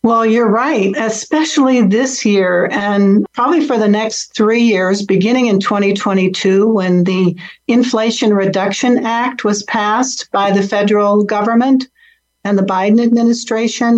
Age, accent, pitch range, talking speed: 60-79, American, 195-240 Hz, 135 wpm